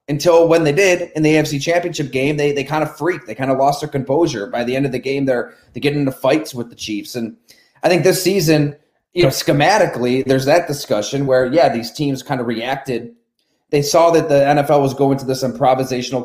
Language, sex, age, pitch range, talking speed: English, male, 30-49, 125-155 Hz, 230 wpm